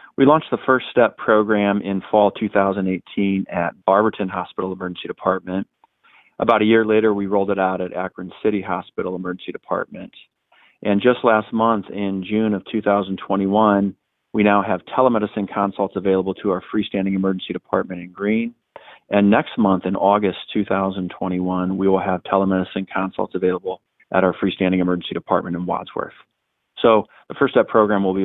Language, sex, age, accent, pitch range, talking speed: English, male, 30-49, American, 90-105 Hz, 160 wpm